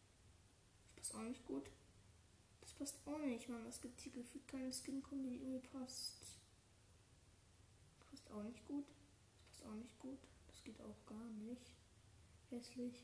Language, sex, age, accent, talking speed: German, female, 10-29, German, 145 wpm